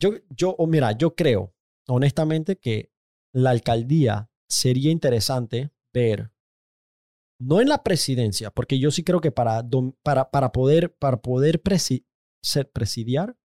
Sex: male